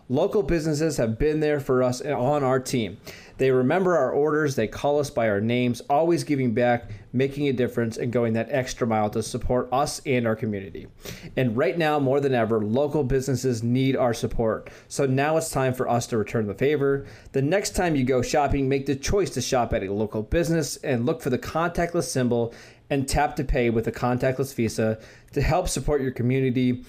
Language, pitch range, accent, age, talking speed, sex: English, 115-145 Hz, American, 30-49, 210 wpm, male